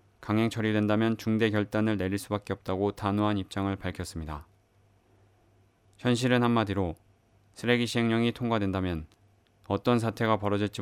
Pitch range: 100-115 Hz